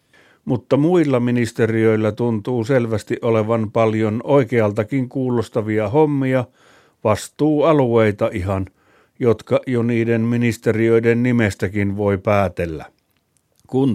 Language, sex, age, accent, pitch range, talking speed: Finnish, male, 50-69, native, 110-135 Hz, 85 wpm